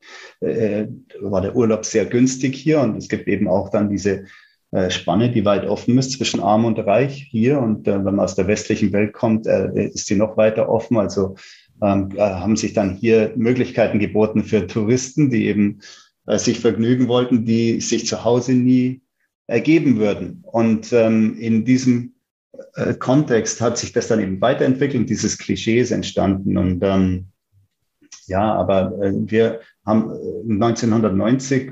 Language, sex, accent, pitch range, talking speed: German, male, German, 105-125 Hz, 165 wpm